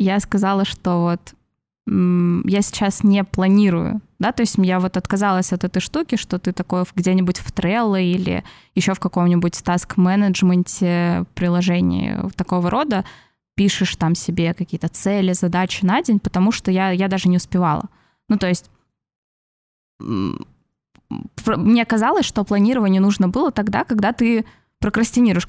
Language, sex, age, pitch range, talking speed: Russian, female, 20-39, 180-210 Hz, 140 wpm